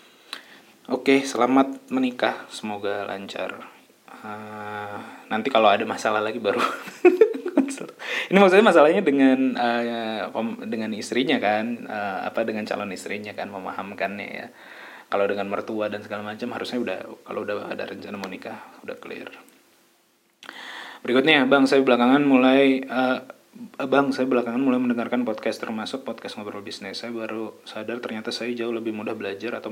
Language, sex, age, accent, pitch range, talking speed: Indonesian, male, 20-39, native, 110-135 Hz, 145 wpm